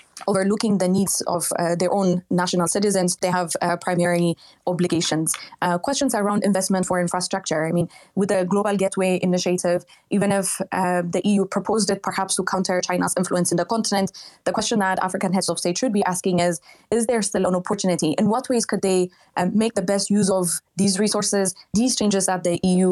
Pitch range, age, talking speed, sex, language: 180-210 Hz, 20-39, 200 wpm, female, English